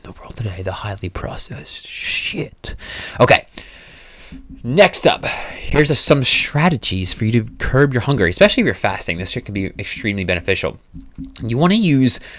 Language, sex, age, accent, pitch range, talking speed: English, male, 20-39, American, 95-120 Hz, 160 wpm